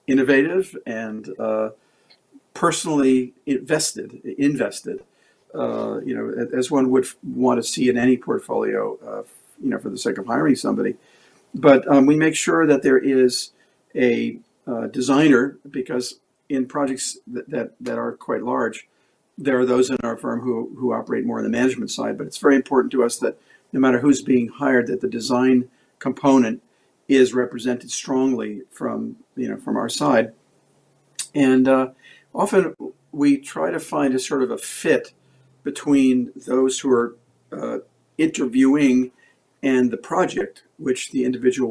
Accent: American